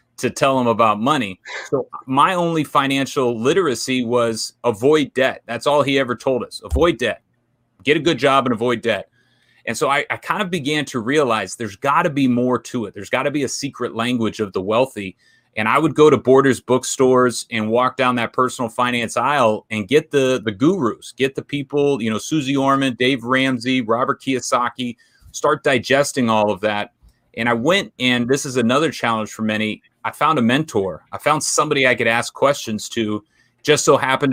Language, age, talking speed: English, 30-49, 200 wpm